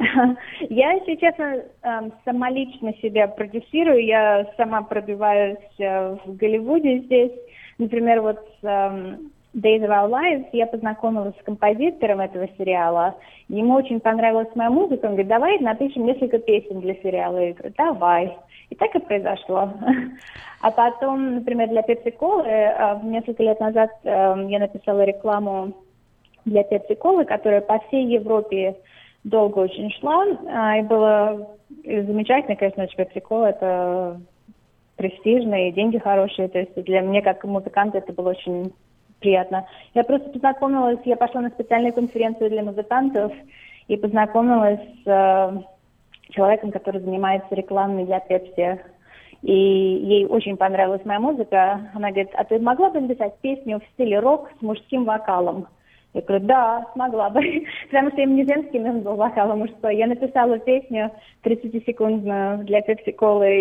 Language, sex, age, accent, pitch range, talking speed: Russian, female, 20-39, native, 195-235 Hz, 140 wpm